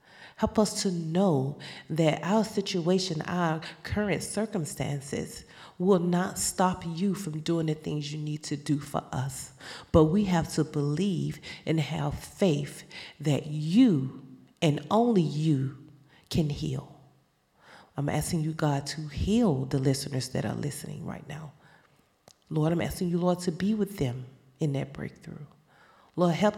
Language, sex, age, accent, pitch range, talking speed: English, female, 40-59, American, 145-180 Hz, 150 wpm